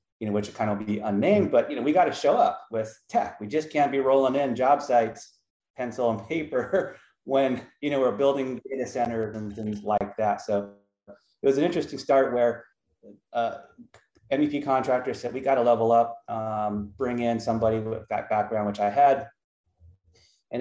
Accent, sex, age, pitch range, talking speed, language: American, male, 30-49, 110-135 Hz, 190 wpm, English